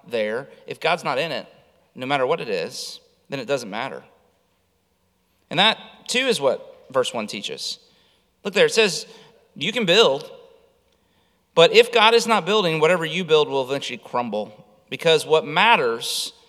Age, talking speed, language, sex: 30-49, 165 wpm, English, male